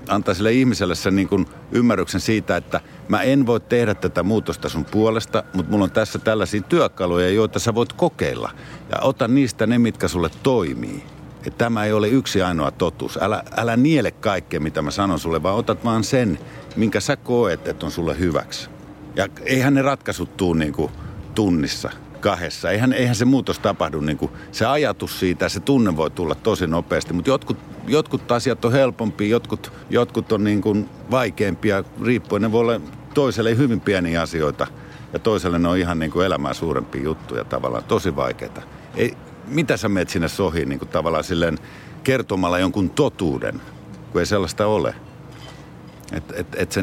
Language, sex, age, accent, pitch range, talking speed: Finnish, male, 50-69, native, 90-120 Hz, 175 wpm